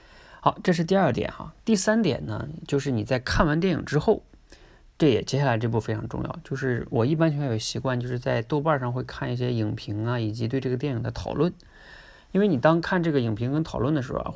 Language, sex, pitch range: Chinese, male, 115-155 Hz